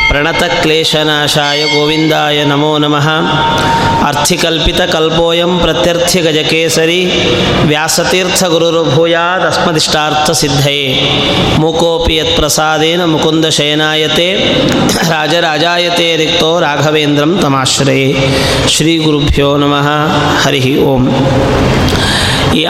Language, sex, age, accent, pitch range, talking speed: Kannada, male, 30-49, native, 155-200 Hz, 50 wpm